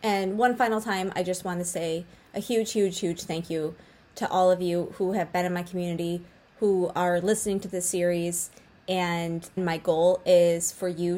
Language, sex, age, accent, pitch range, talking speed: English, female, 20-39, American, 175-210 Hz, 200 wpm